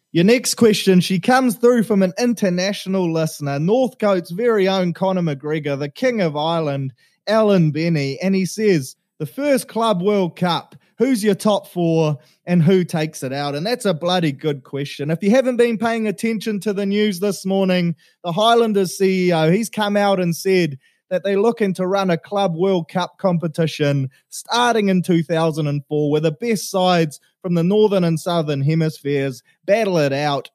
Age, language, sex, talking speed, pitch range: 20-39, English, male, 175 wpm, 155-205 Hz